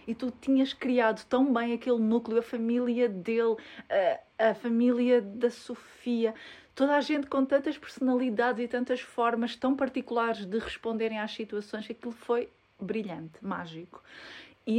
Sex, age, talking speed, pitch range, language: female, 20-39, 145 wpm, 205-240 Hz, Portuguese